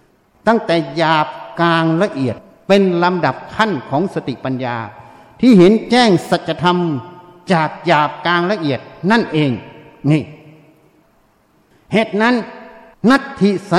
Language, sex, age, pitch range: Thai, male, 60-79, 175-225 Hz